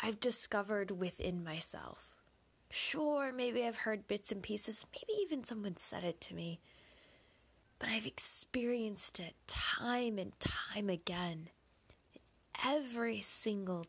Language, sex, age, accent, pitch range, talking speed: English, female, 20-39, American, 170-225 Hz, 120 wpm